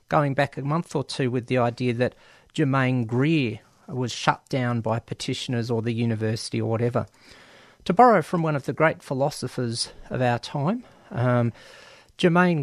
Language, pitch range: English, 120-160 Hz